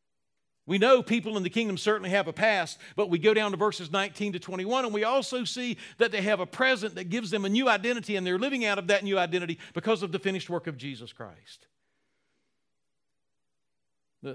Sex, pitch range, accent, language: male, 125-190 Hz, American, English